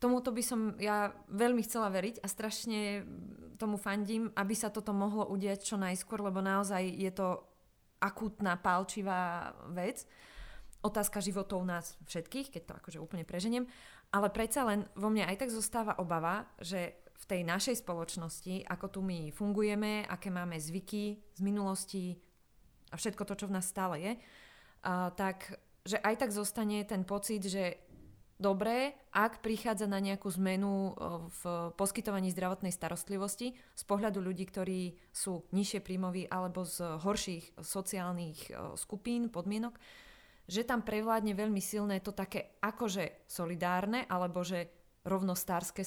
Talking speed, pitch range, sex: 140 wpm, 180-210 Hz, female